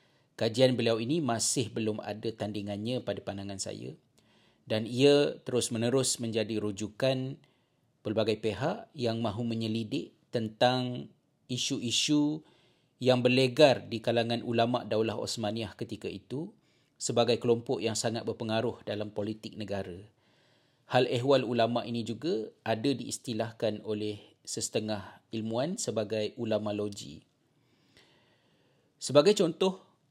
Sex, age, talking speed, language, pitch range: male, 40-59, 105 wpm, Malay, 110-130 Hz